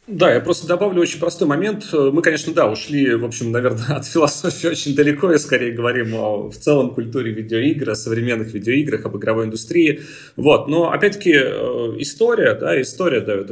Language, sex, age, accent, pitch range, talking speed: Russian, male, 30-49, native, 110-170 Hz, 175 wpm